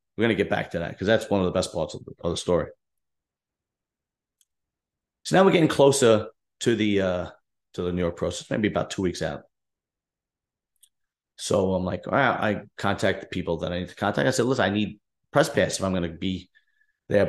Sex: male